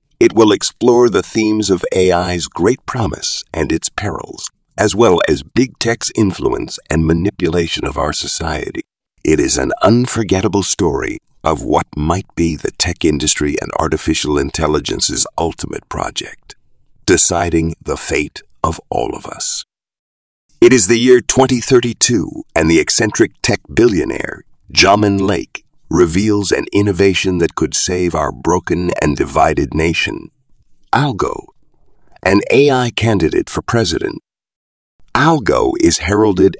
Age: 50-69